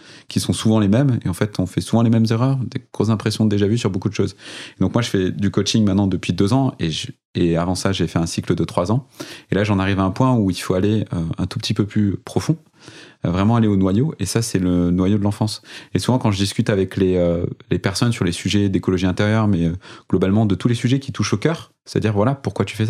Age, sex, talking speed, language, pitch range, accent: 30-49, male, 285 wpm, French, 95-115 Hz, French